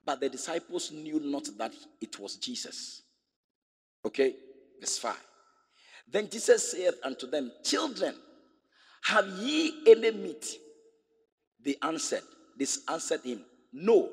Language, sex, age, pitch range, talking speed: English, male, 50-69, 265-390 Hz, 120 wpm